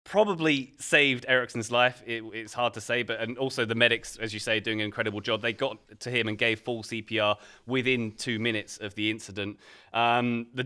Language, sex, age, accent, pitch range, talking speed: English, male, 20-39, British, 105-125 Hz, 205 wpm